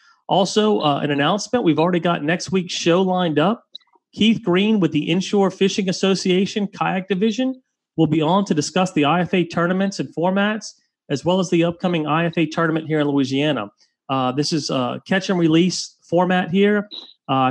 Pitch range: 140-180 Hz